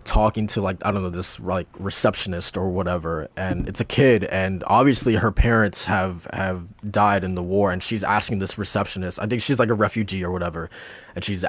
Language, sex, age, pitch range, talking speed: English, male, 20-39, 95-115 Hz, 210 wpm